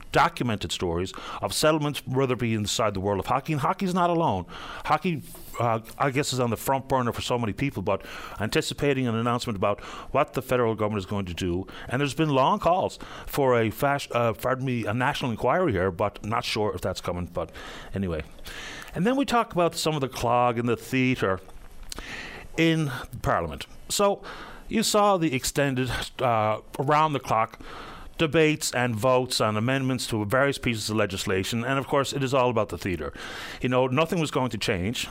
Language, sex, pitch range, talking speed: English, male, 110-150 Hz, 195 wpm